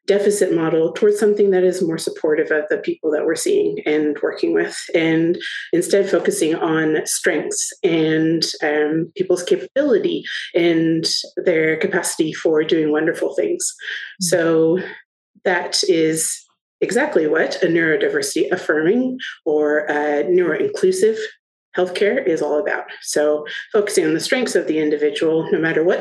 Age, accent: 30-49, American